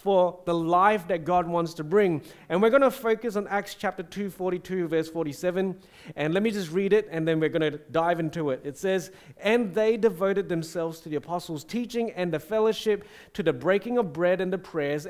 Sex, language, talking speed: male, English, 220 wpm